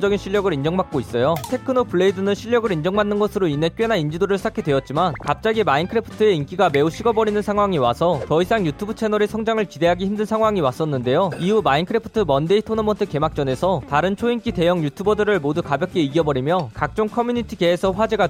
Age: 20-39